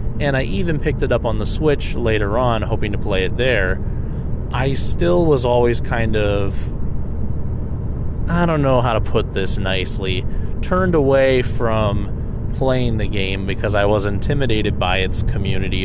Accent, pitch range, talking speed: American, 85-115 Hz, 165 wpm